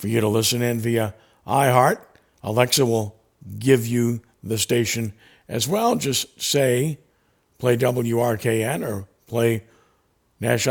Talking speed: 125 wpm